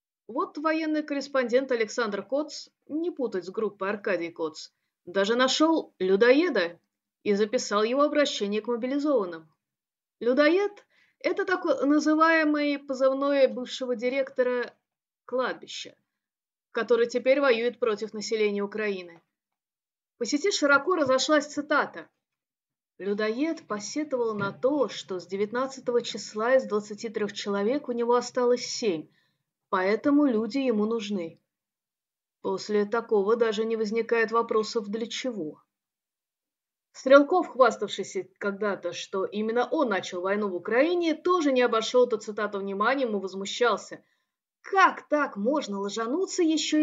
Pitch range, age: 205-275 Hz, 30-49